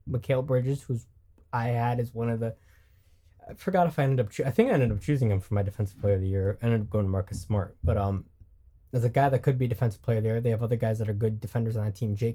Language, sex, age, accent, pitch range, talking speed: English, male, 20-39, American, 105-130 Hz, 290 wpm